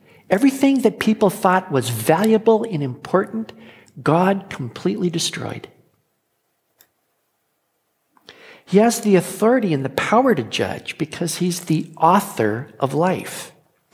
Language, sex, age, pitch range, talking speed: English, male, 60-79, 155-200 Hz, 110 wpm